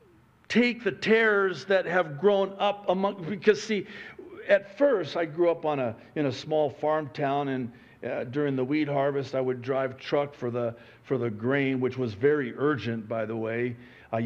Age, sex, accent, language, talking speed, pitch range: 50-69, male, American, English, 190 wpm, 130-195 Hz